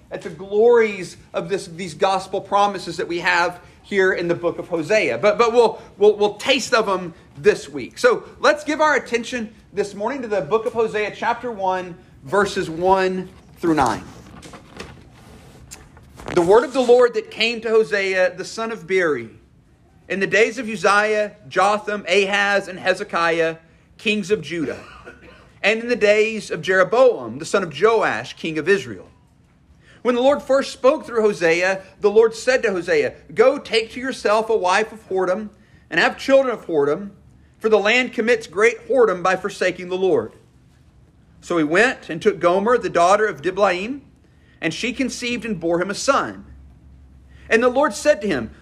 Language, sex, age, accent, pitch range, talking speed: English, male, 40-59, American, 185-235 Hz, 175 wpm